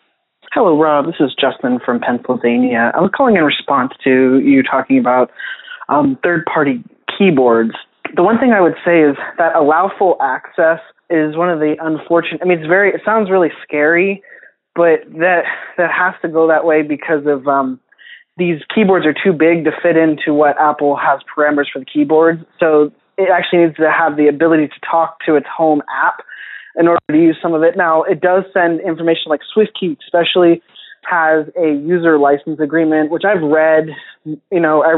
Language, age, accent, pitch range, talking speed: English, 20-39, American, 150-175 Hz, 185 wpm